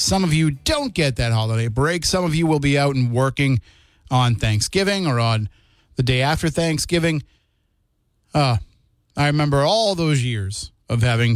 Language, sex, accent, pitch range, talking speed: English, male, American, 115-145 Hz, 170 wpm